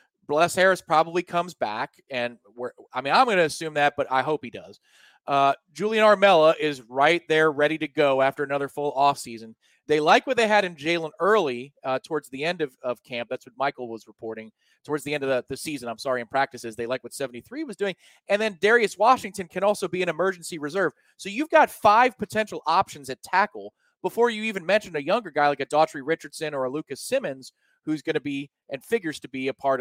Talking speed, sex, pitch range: 230 wpm, male, 135-185 Hz